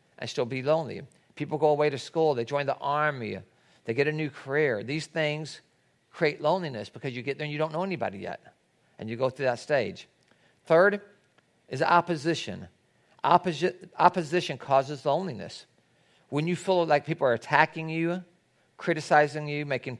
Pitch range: 135-165 Hz